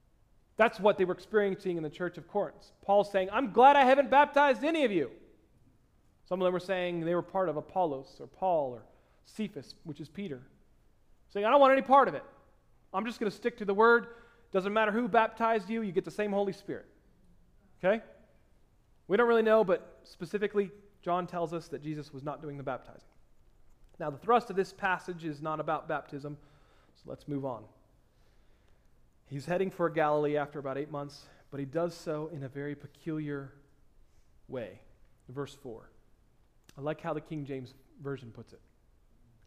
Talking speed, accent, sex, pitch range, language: 185 wpm, American, male, 145-210 Hz, English